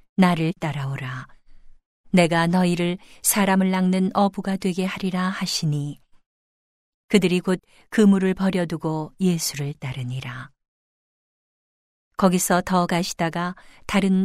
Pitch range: 155-190 Hz